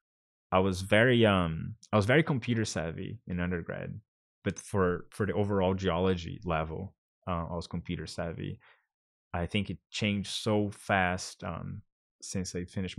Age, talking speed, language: 20-39, 155 wpm, English